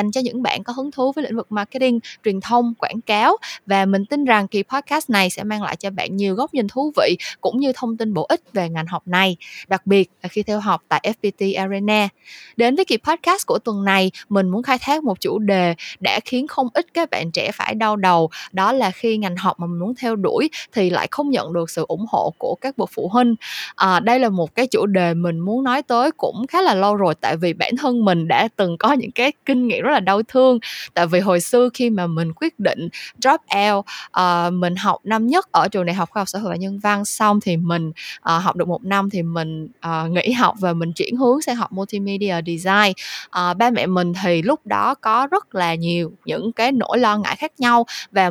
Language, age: Vietnamese, 20-39